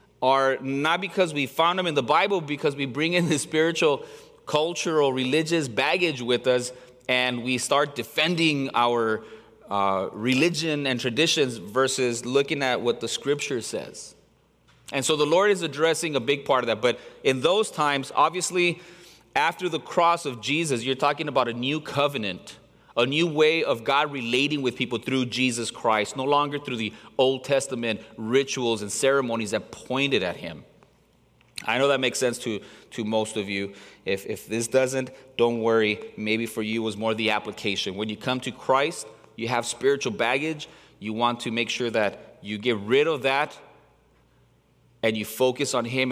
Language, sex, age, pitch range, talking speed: English, male, 30-49, 115-150 Hz, 175 wpm